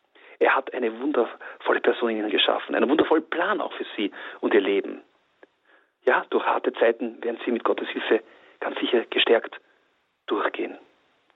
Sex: male